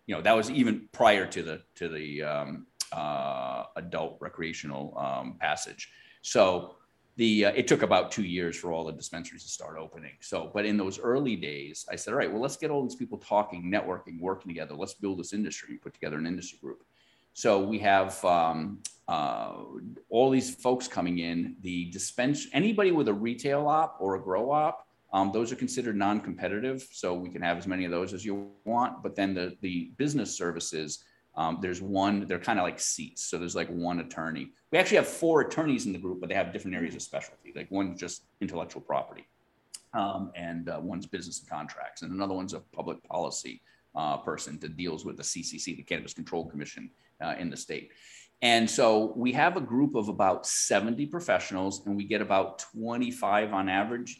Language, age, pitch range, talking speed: English, 30-49, 90-115 Hz, 200 wpm